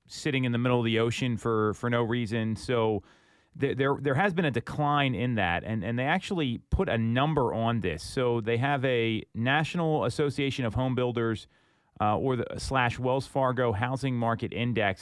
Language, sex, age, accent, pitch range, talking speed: English, male, 30-49, American, 110-140 Hz, 190 wpm